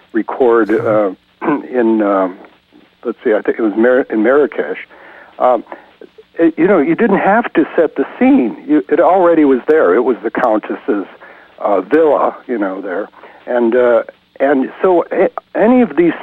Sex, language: male, English